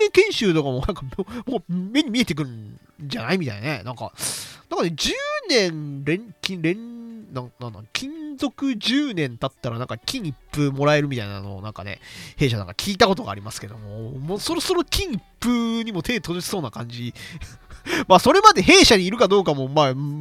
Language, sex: Japanese, male